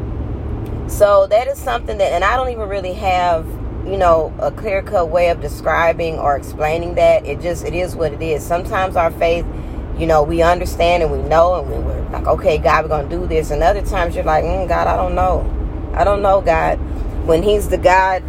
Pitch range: 160-220 Hz